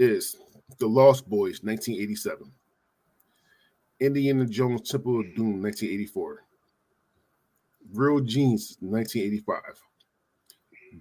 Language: English